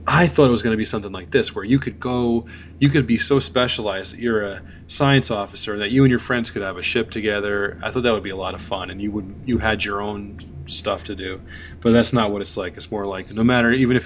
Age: 20-39